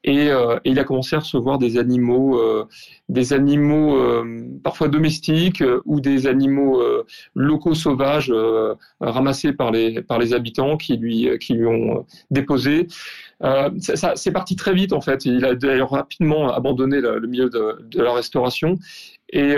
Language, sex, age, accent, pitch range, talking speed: French, male, 40-59, French, 125-155 Hz, 155 wpm